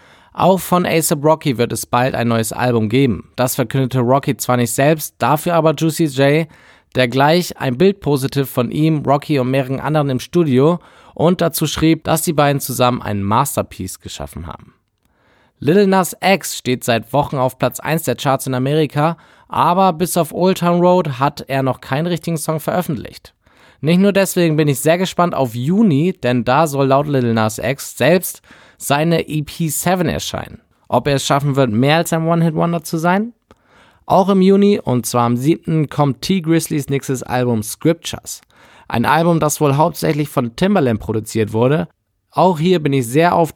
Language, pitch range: German, 125-170 Hz